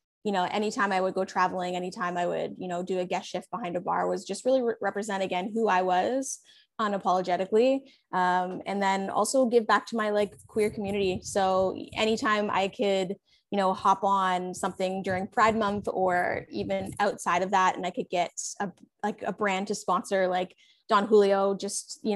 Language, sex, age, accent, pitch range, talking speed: English, female, 20-39, American, 185-215 Hz, 195 wpm